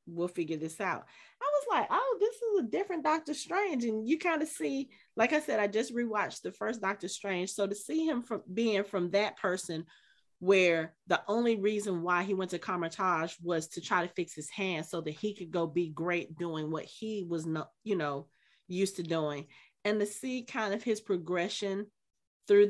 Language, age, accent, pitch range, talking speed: English, 30-49, American, 180-245 Hz, 210 wpm